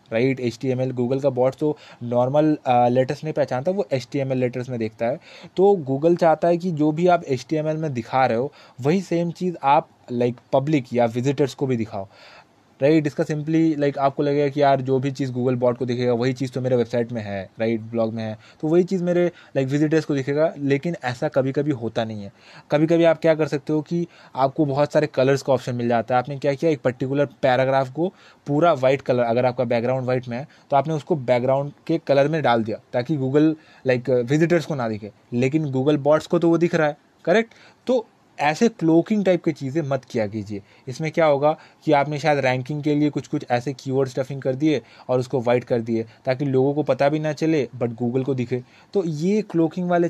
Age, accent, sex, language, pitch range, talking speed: 20-39, native, male, Hindi, 125-155 Hz, 230 wpm